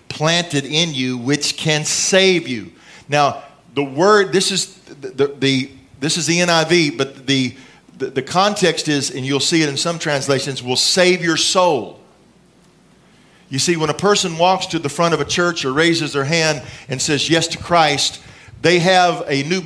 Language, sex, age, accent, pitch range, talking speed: English, male, 40-59, American, 145-185 Hz, 185 wpm